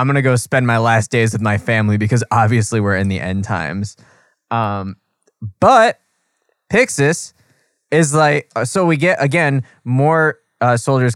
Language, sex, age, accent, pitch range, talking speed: English, male, 20-39, American, 105-125 Hz, 160 wpm